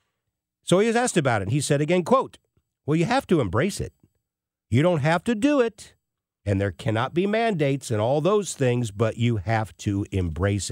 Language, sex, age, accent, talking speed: English, male, 50-69, American, 205 wpm